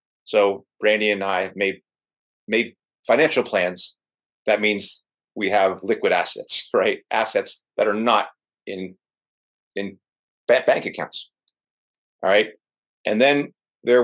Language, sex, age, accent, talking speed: English, male, 50-69, American, 125 wpm